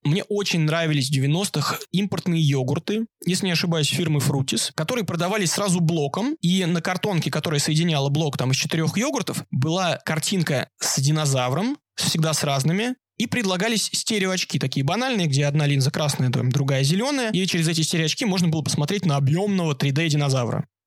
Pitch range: 145-180 Hz